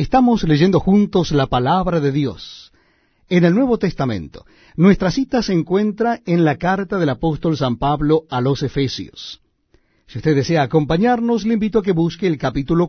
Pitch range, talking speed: 145-200 Hz, 170 wpm